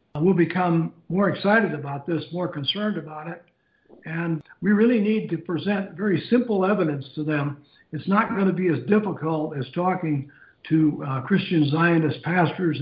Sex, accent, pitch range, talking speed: male, American, 150-180 Hz, 165 wpm